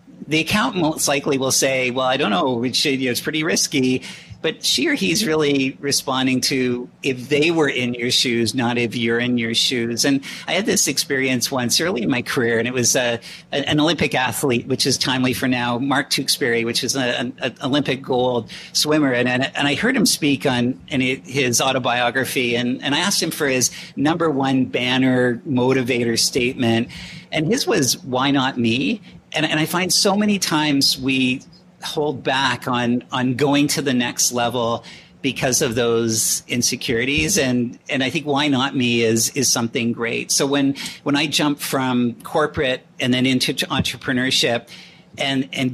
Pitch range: 125-155 Hz